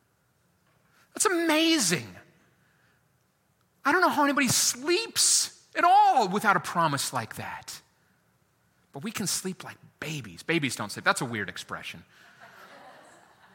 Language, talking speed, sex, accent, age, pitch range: English, 125 wpm, male, American, 30-49, 140-215 Hz